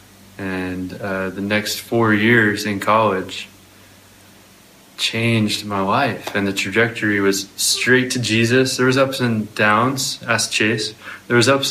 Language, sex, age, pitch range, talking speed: English, male, 20-39, 100-115 Hz, 145 wpm